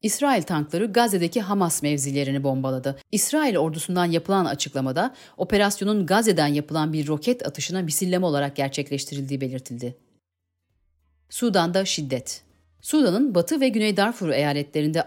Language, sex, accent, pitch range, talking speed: Turkish, female, native, 140-210 Hz, 110 wpm